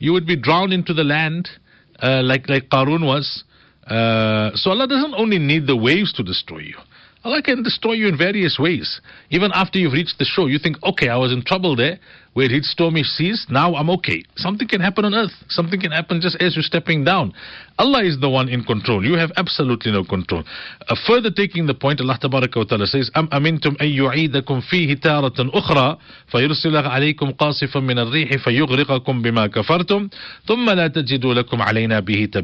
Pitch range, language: 130-175 Hz, English